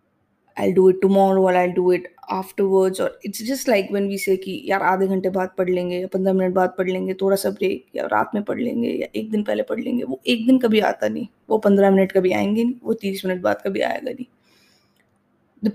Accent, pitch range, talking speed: Indian, 190-225 Hz, 265 wpm